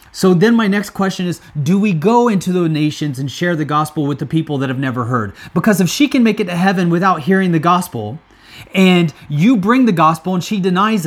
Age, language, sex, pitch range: 30-49, English, male, 150-185 Hz